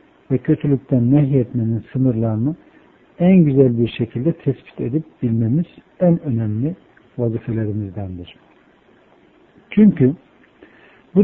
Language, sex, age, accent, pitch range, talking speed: Turkish, male, 60-79, native, 115-155 Hz, 85 wpm